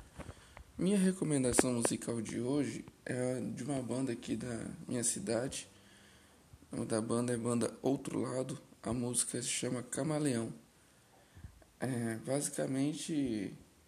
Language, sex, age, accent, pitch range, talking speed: Portuguese, male, 10-29, Brazilian, 115-130 Hz, 125 wpm